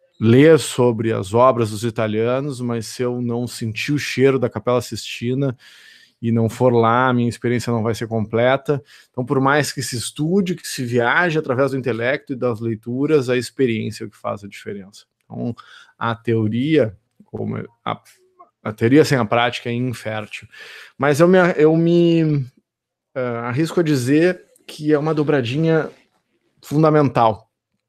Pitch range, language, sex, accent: 115-150 Hz, Portuguese, male, Brazilian